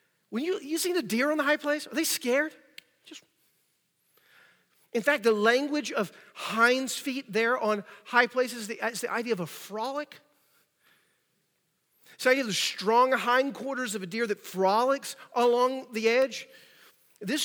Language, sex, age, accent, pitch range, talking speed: English, male, 40-59, American, 185-245 Hz, 165 wpm